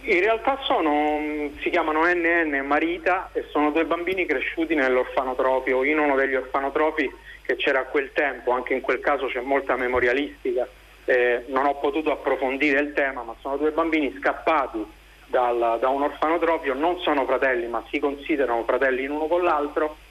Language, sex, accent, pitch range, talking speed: Italian, male, native, 125-160 Hz, 165 wpm